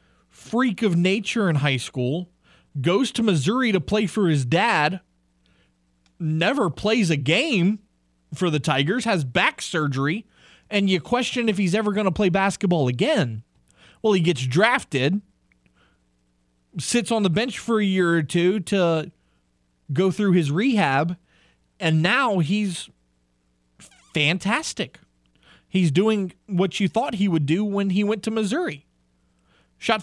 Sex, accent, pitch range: male, American, 125-200 Hz